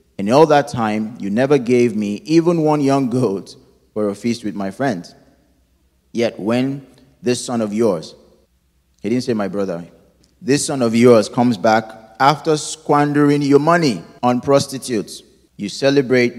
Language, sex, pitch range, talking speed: English, male, 85-120 Hz, 155 wpm